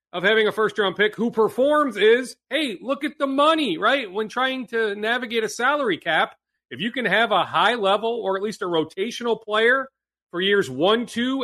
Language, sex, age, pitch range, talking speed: English, male, 40-59, 195-260 Hz, 205 wpm